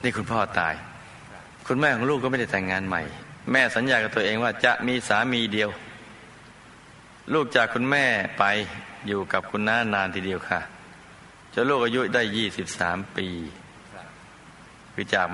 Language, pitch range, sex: Thai, 100-125 Hz, male